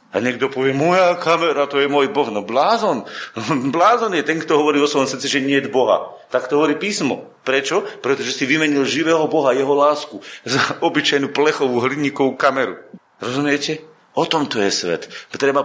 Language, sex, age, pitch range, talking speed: Slovak, male, 40-59, 135-195 Hz, 180 wpm